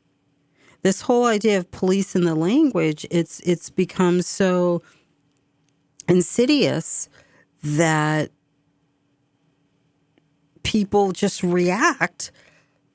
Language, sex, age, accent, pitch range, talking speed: English, female, 40-59, American, 150-205 Hz, 80 wpm